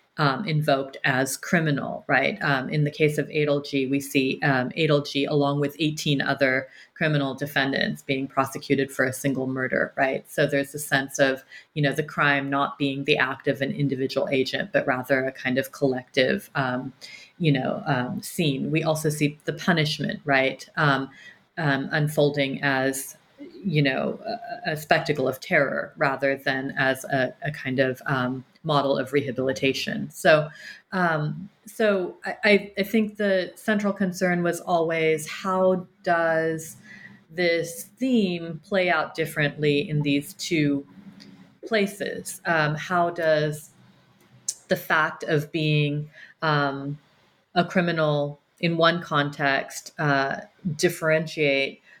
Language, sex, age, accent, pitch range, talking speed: English, female, 30-49, American, 140-170 Hz, 140 wpm